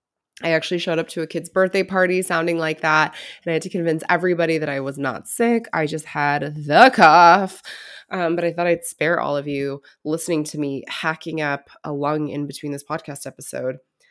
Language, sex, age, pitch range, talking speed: English, female, 20-39, 150-185 Hz, 210 wpm